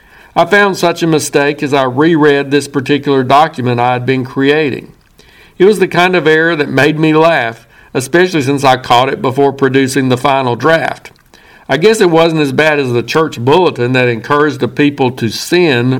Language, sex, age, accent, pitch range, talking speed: English, male, 60-79, American, 130-165 Hz, 190 wpm